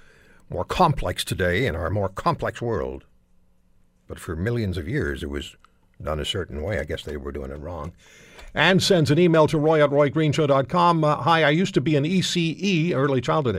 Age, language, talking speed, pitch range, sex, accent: 60-79, English, 190 wpm, 110-160 Hz, male, American